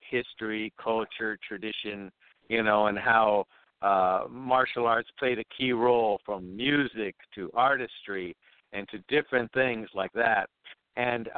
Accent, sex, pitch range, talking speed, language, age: American, male, 110-130 Hz, 130 wpm, English, 60-79